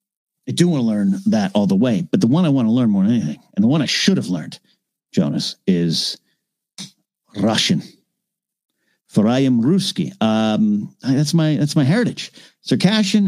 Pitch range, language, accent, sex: 120-195 Hz, English, American, male